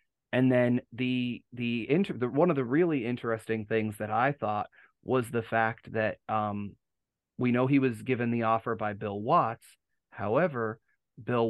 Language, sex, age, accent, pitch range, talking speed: English, male, 30-49, American, 110-130 Hz, 165 wpm